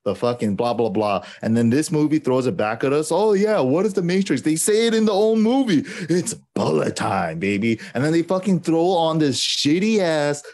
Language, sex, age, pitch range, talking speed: English, male, 30-49, 120-200 Hz, 230 wpm